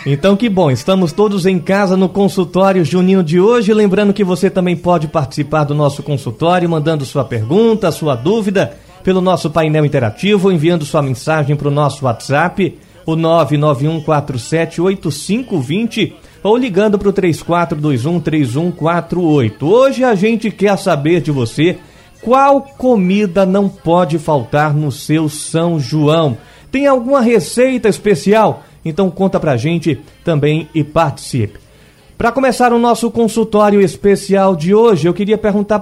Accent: Brazilian